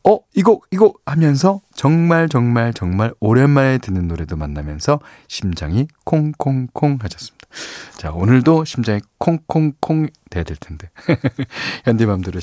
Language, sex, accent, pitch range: Korean, male, native, 90-140 Hz